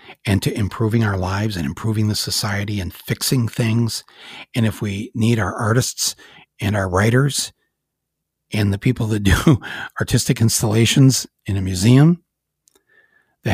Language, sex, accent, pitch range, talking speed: English, male, American, 110-140 Hz, 140 wpm